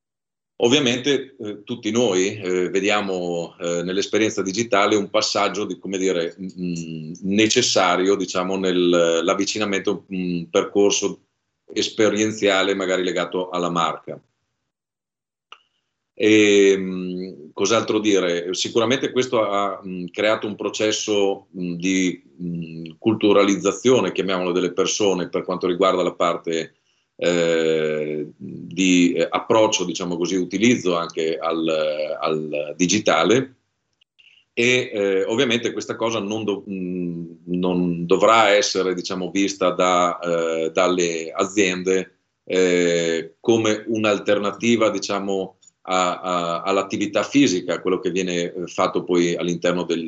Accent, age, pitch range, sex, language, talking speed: native, 40-59, 85-100 Hz, male, Italian, 85 wpm